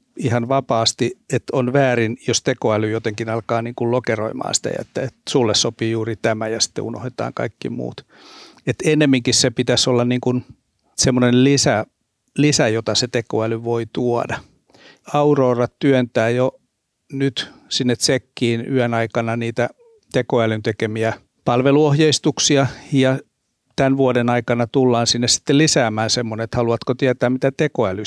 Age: 60-79